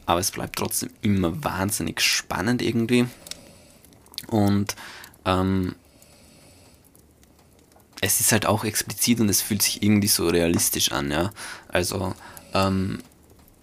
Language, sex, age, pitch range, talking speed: German, male, 20-39, 90-110 Hz, 115 wpm